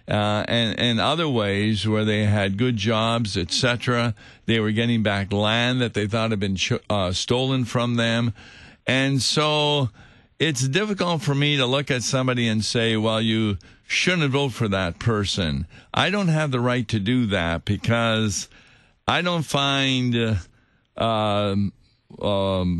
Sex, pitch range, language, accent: male, 105-130 Hz, English, American